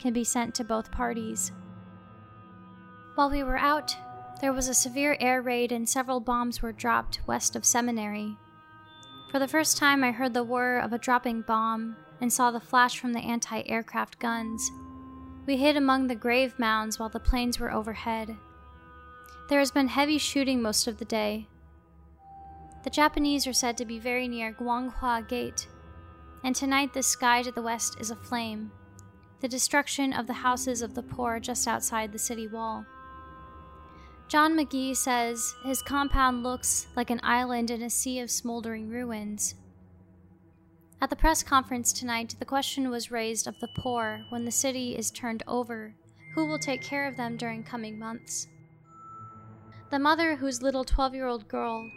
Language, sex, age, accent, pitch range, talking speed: English, female, 10-29, American, 165-255 Hz, 165 wpm